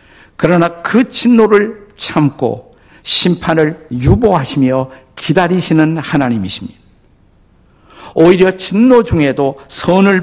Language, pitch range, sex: Korean, 120-170 Hz, male